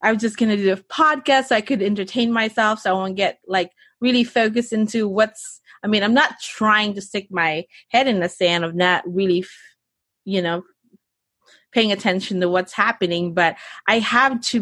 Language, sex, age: English, female, 20-39